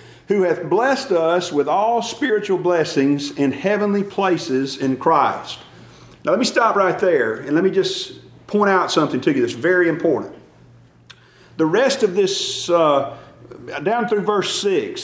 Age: 40-59